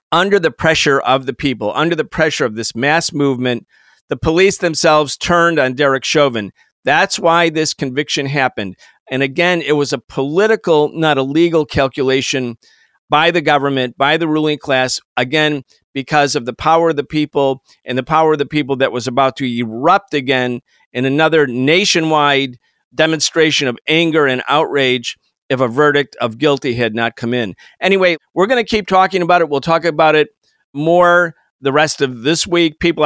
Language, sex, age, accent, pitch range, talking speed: English, male, 50-69, American, 140-175 Hz, 180 wpm